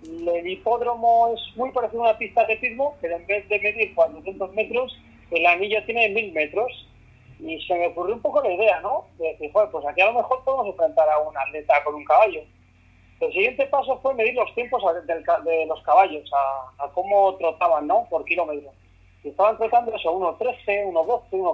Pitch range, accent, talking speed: 150-220 Hz, Spanish, 200 wpm